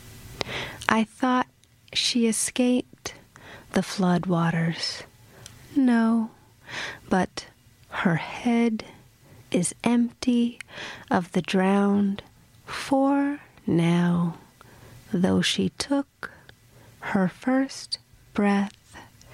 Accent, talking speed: American, 75 wpm